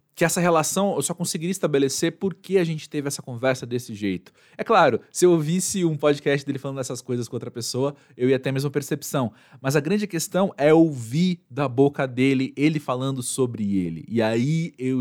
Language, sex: Portuguese, male